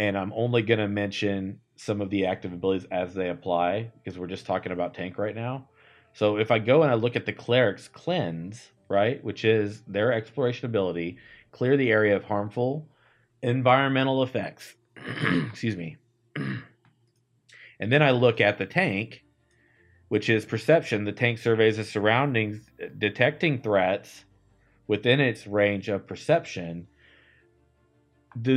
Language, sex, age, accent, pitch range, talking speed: English, male, 30-49, American, 100-120 Hz, 150 wpm